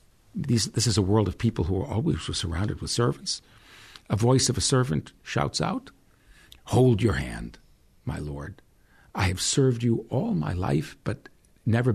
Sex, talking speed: male, 165 wpm